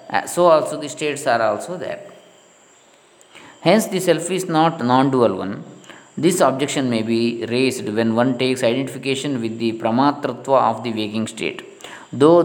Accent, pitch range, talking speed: native, 120-155 Hz, 150 wpm